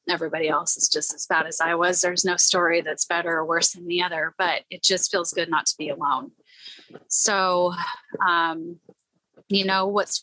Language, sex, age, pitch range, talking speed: English, female, 30-49, 170-205 Hz, 195 wpm